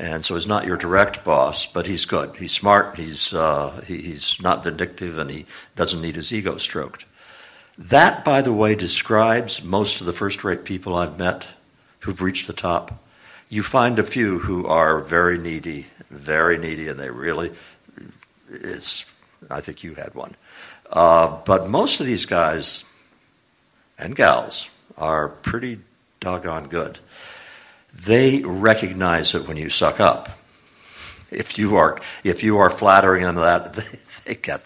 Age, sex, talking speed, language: 60-79, male, 155 wpm, English